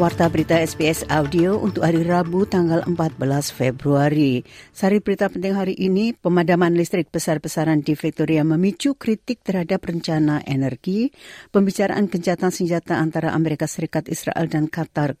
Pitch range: 150-185 Hz